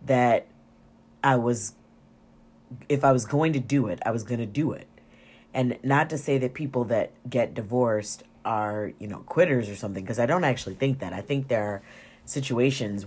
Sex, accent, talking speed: female, American, 195 wpm